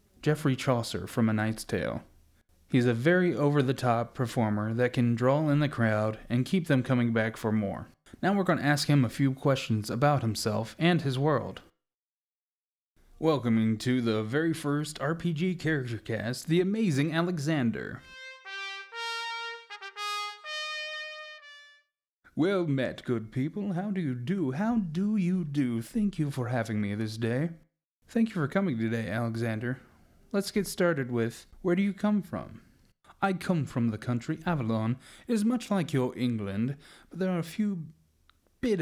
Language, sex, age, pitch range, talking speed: English, male, 30-49, 115-180 Hz, 155 wpm